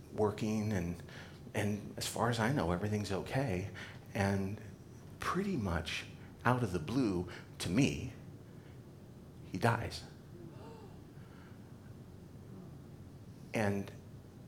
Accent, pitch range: American, 100-135 Hz